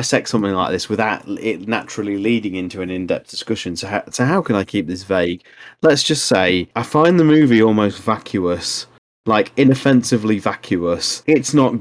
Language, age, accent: English, 30-49, British